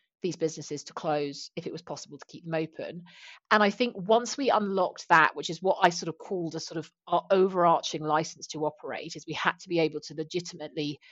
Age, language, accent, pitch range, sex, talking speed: 40-59, English, British, 150-180 Hz, female, 225 wpm